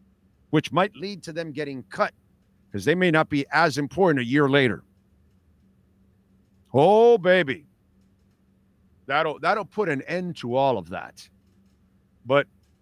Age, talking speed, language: 50-69, 135 wpm, English